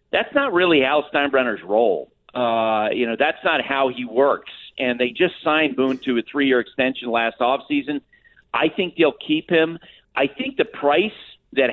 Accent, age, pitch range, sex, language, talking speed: American, 40-59, 120-145 Hz, male, English, 180 wpm